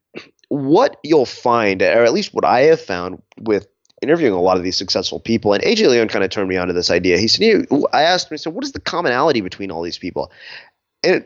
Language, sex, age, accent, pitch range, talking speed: English, male, 30-49, American, 95-125 Hz, 235 wpm